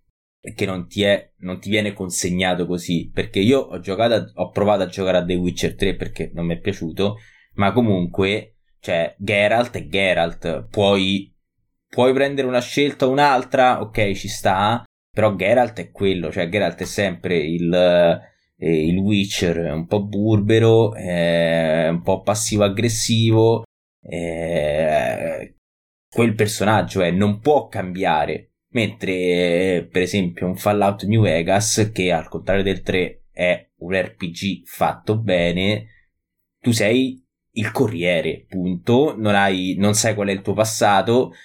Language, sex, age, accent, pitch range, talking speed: Italian, male, 20-39, native, 90-110 Hz, 145 wpm